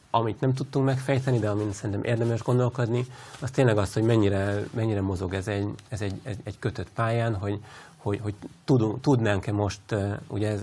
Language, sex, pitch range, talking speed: Hungarian, male, 95-115 Hz, 160 wpm